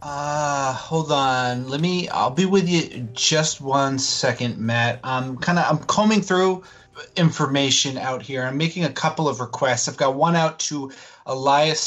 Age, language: 30-49, English